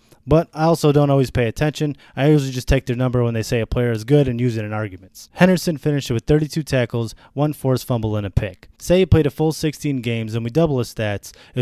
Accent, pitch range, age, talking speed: American, 115-150 Hz, 20-39, 255 wpm